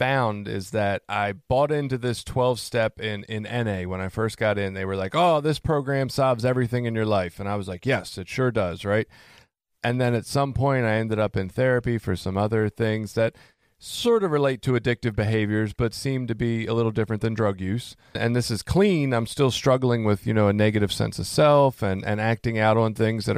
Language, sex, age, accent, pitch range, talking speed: English, male, 40-59, American, 105-130 Hz, 230 wpm